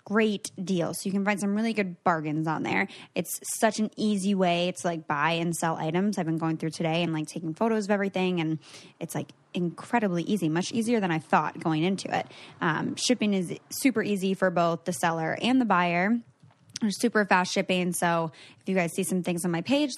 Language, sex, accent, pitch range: English, female, American, 170-215 Hz